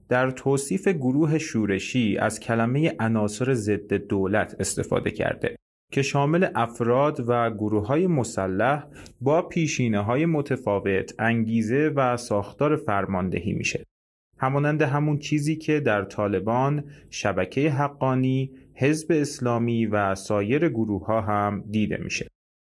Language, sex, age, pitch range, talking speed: Persian, male, 30-49, 105-145 Hz, 110 wpm